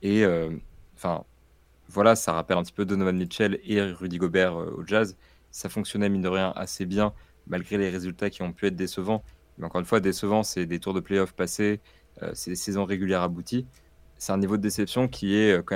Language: French